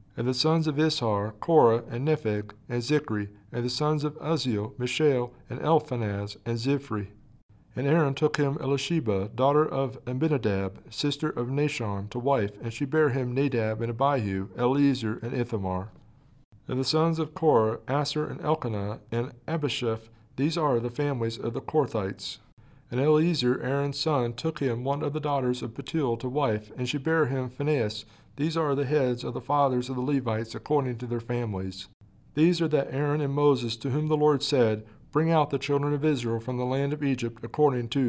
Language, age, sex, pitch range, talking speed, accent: English, 40-59, male, 115-150 Hz, 185 wpm, American